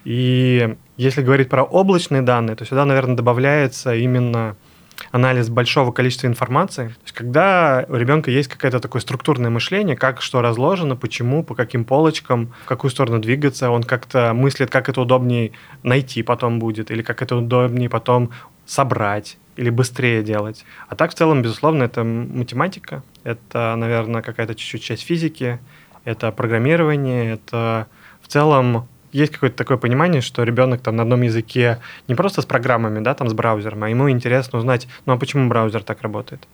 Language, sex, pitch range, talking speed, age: Russian, male, 115-135 Hz, 160 wpm, 20-39